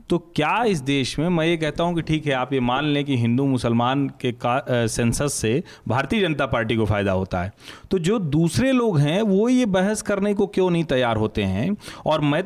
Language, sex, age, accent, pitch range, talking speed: Hindi, male, 40-59, native, 150-215 Hz, 230 wpm